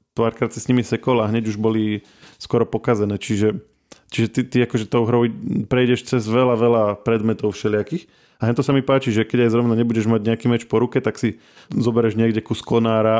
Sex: male